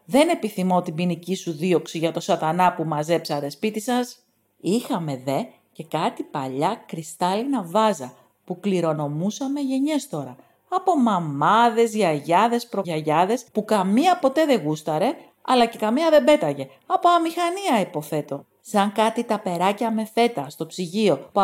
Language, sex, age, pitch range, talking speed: English, female, 40-59, 155-235 Hz, 140 wpm